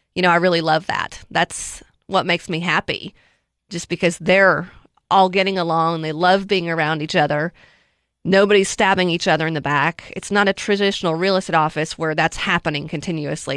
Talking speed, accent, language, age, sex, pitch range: 180 wpm, American, English, 30-49, female, 165-195 Hz